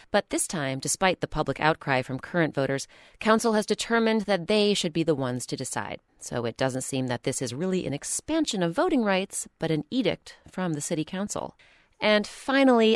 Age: 30-49